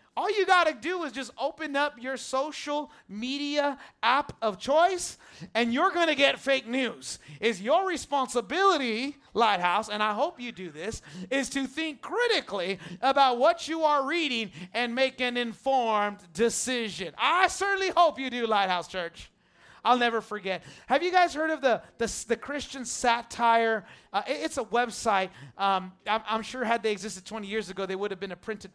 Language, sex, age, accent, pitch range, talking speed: English, male, 30-49, American, 210-280 Hz, 180 wpm